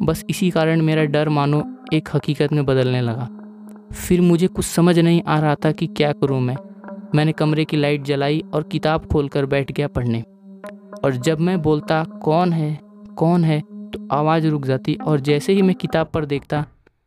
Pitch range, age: 145-170 Hz, 20-39